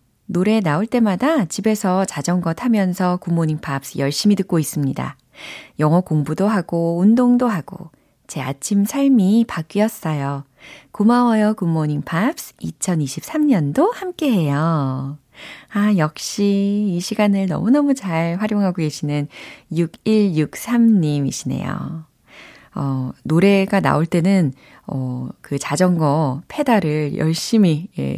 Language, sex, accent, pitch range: Korean, female, native, 150-205 Hz